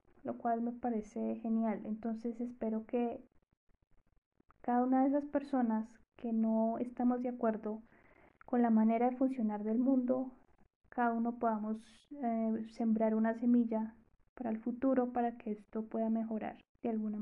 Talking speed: 145 wpm